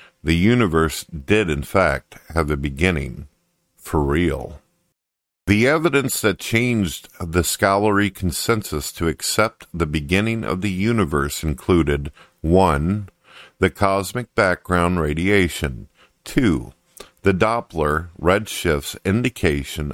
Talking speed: 105 wpm